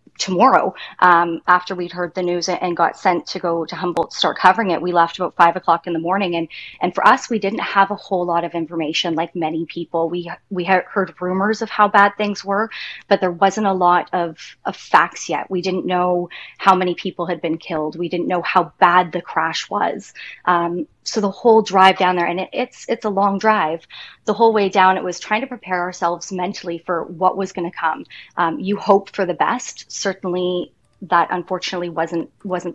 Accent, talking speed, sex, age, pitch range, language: American, 215 wpm, female, 20-39, 175-195 Hz, English